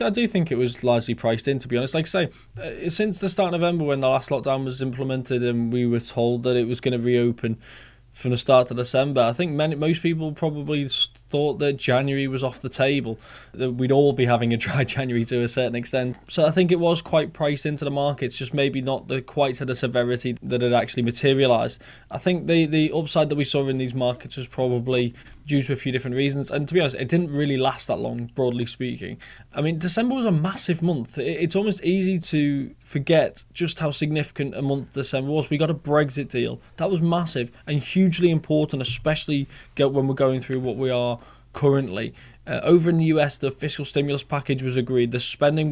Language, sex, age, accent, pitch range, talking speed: English, male, 20-39, British, 125-155 Hz, 220 wpm